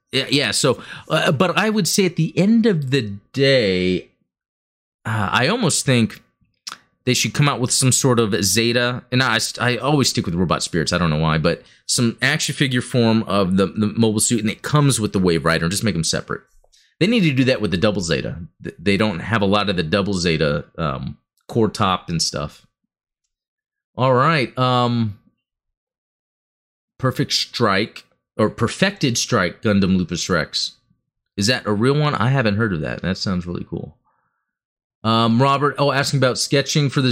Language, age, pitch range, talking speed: English, 30-49, 100-135 Hz, 190 wpm